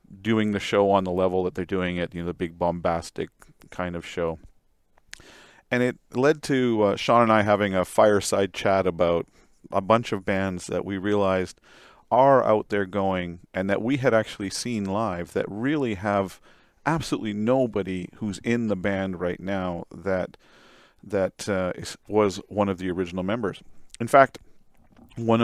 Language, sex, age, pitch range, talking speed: English, male, 40-59, 90-110 Hz, 170 wpm